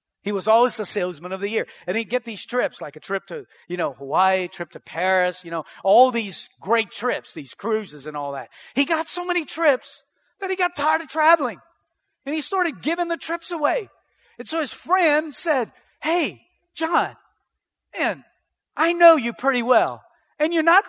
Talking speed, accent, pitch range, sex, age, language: 195 wpm, American, 210-315 Hz, male, 40-59, English